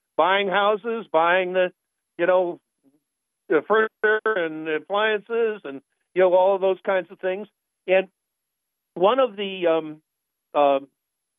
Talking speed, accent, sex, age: 135 wpm, American, male, 50-69